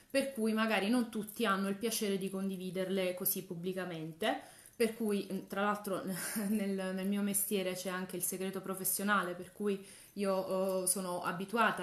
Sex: female